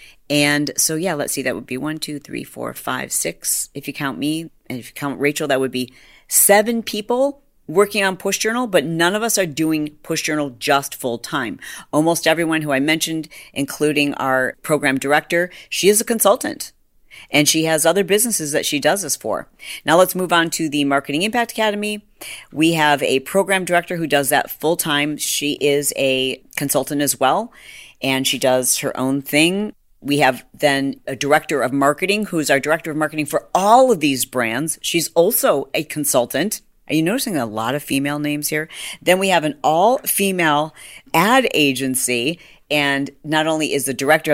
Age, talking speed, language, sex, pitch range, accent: 40-59, 190 wpm, English, female, 135-170 Hz, American